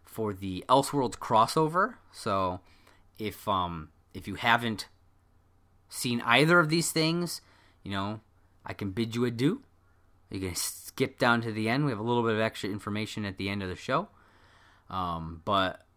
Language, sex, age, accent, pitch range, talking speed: English, male, 30-49, American, 95-135 Hz, 170 wpm